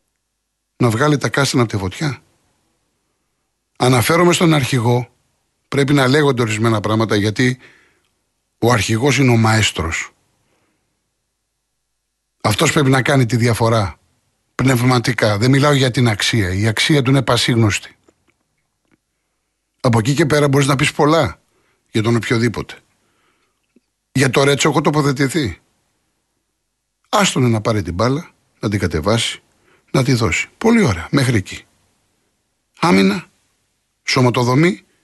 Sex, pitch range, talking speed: male, 110-155 Hz, 120 wpm